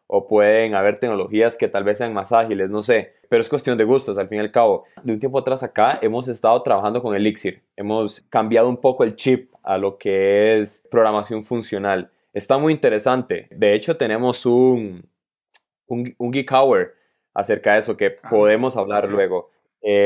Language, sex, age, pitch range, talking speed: Spanish, male, 20-39, 105-135 Hz, 185 wpm